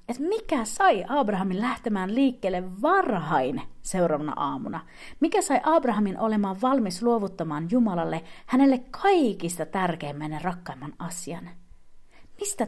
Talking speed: 110 wpm